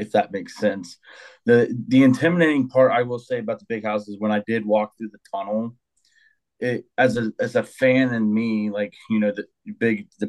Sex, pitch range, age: male, 110-130 Hz, 30-49